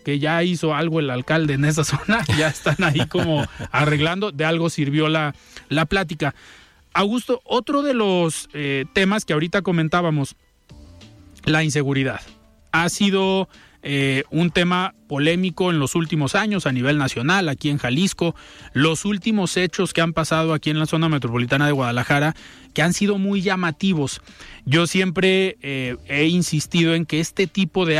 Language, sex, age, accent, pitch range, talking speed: Spanish, male, 30-49, Mexican, 145-185 Hz, 160 wpm